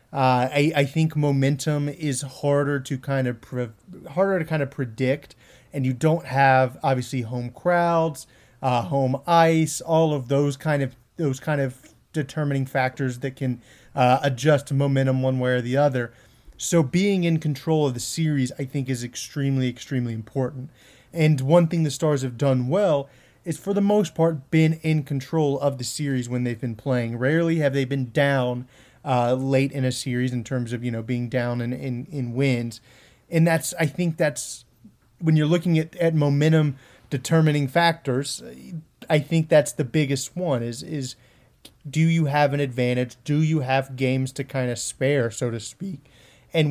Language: English